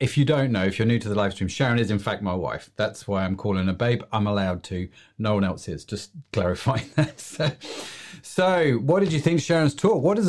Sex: male